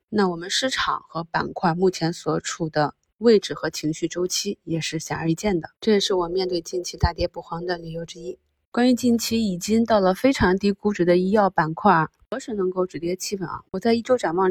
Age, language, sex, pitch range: 20-39, Chinese, female, 165-195 Hz